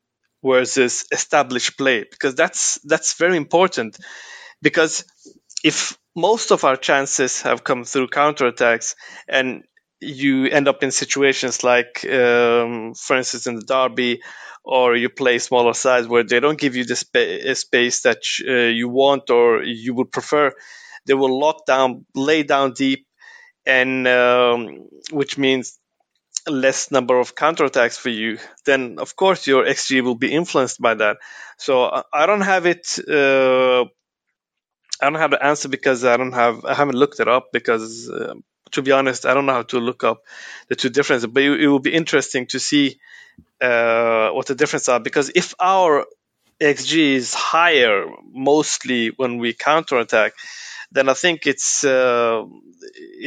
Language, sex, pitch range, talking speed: English, male, 125-145 Hz, 160 wpm